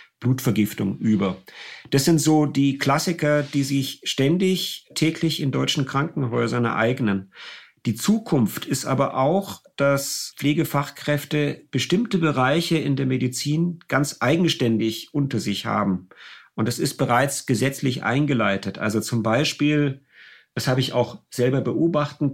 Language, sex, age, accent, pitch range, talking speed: German, male, 50-69, German, 125-155 Hz, 125 wpm